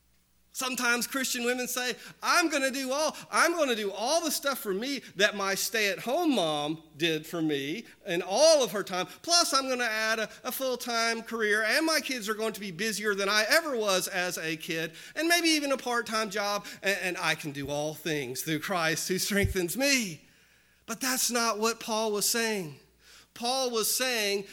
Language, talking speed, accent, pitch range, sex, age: English, 195 wpm, American, 170-235 Hz, male, 40-59